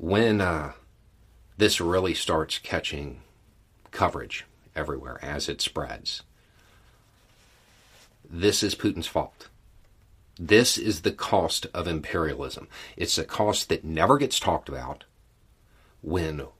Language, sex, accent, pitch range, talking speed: English, male, American, 80-105 Hz, 110 wpm